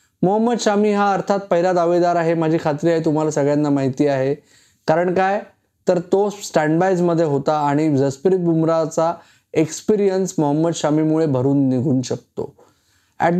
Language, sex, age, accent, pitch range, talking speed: Marathi, male, 20-39, native, 140-170 Hz, 140 wpm